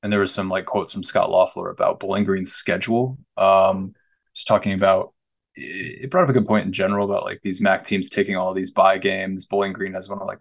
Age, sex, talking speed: 20-39, male, 235 wpm